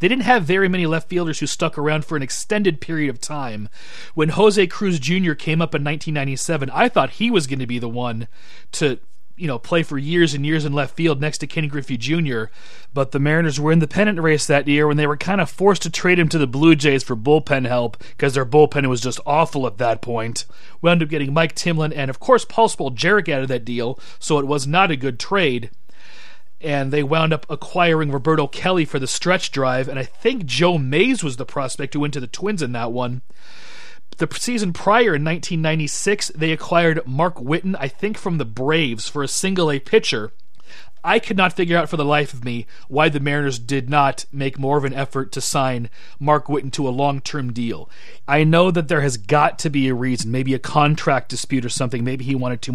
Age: 30-49